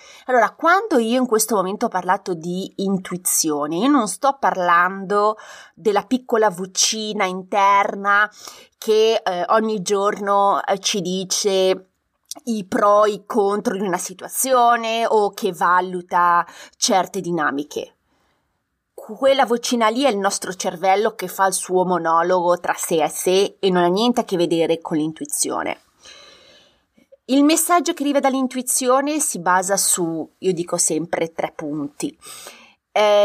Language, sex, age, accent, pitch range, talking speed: Italian, female, 30-49, native, 180-235 Hz, 140 wpm